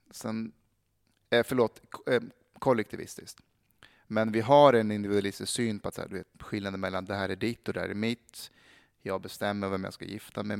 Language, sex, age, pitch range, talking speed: Swedish, male, 30-49, 95-115 Hz, 205 wpm